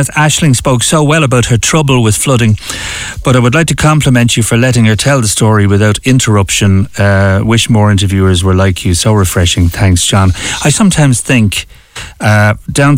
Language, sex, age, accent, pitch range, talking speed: English, male, 30-49, Irish, 95-125 Hz, 185 wpm